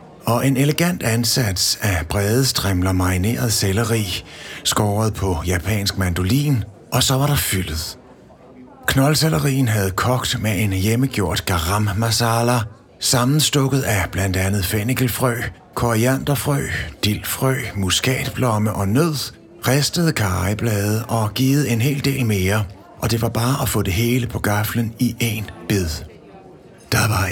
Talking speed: 130 wpm